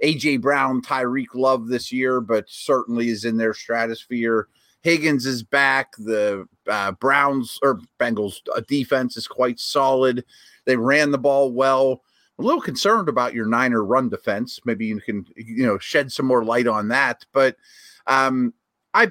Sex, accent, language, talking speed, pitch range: male, American, English, 165 wpm, 125-180 Hz